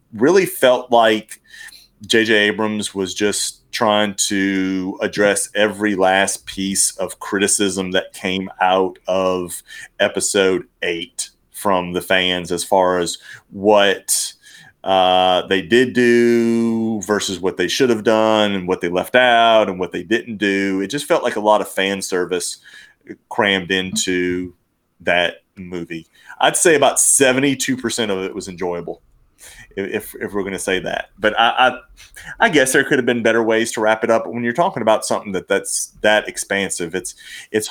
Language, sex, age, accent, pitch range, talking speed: English, male, 30-49, American, 95-115 Hz, 165 wpm